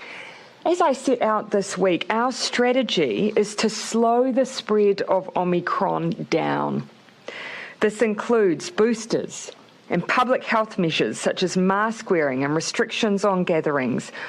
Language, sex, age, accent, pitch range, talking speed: English, female, 40-59, Australian, 185-245 Hz, 130 wpm